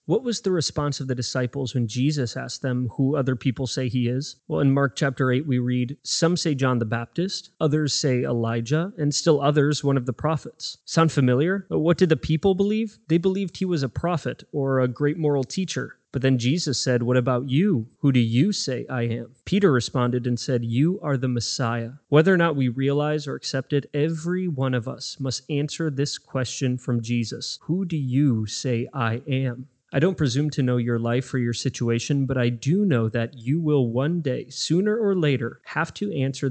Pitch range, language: 125-150 Hz, English